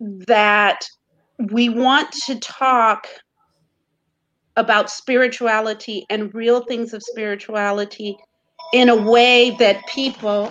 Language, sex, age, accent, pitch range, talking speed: English, female, 40-59, American, 200-245 Hz, 95 wpm